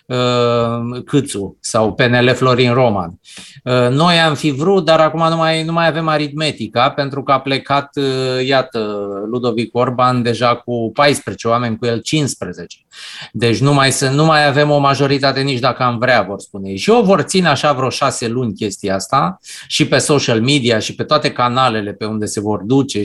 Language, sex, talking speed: Romanian, male, 175 wpm